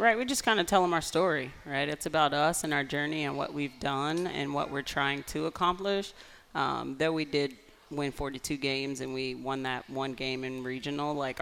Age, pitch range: 30-49, 140-155 Hz